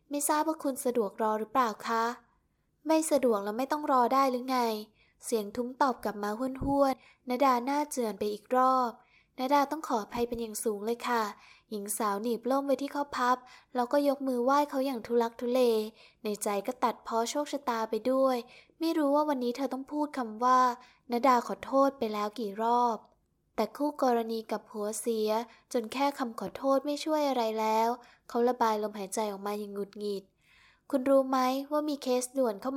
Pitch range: 225-270 Hz